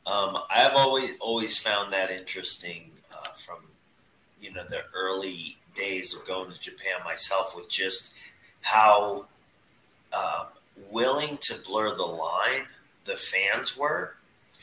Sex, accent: male, American